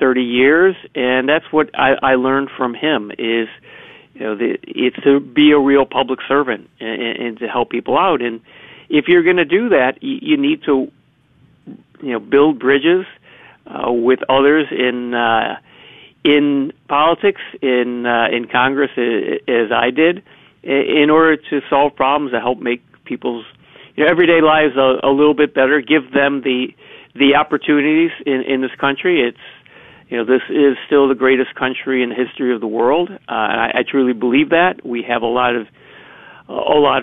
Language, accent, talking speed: English, American, 185 wpm